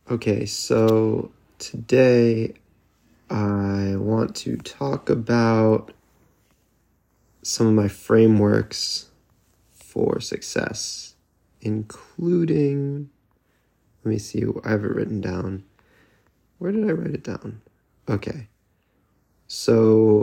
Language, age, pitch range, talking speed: English, 20-39, 100-115 Hz, 90 wpm